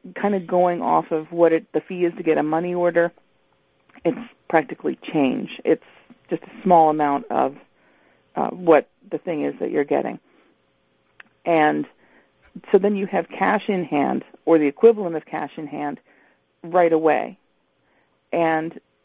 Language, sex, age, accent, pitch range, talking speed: English, female, 40-59, American, 155-185 Hz, 155 wpm